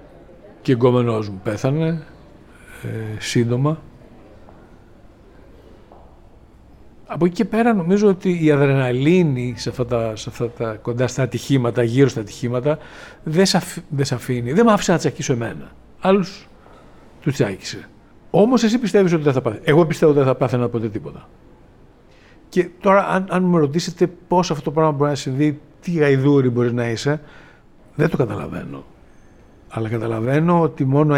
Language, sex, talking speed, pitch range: Greek, male, 160 wpm, 115-150 Hz